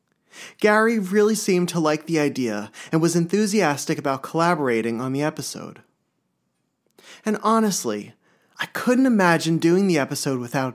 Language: English